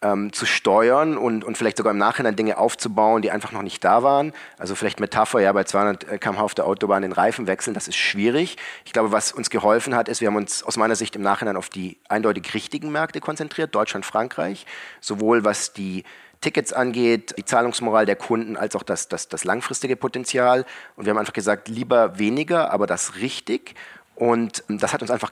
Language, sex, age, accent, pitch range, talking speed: German, male, 40-59, German, 105-130 Hz, 205 wpm